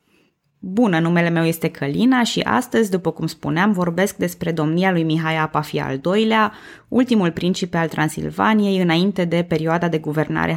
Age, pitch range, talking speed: 20-39, 155-210 Hz, 155 wpm